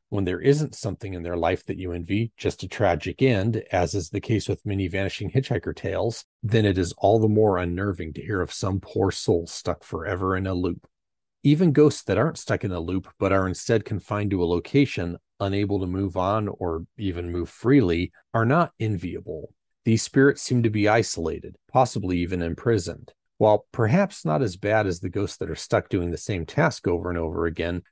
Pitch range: 90-115 Hz